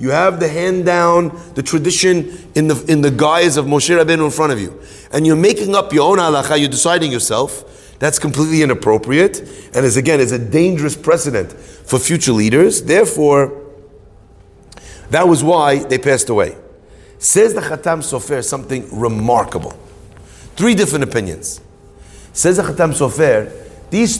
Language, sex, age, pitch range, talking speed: English, male, 30-49, 100-155 Hz, 155 wpm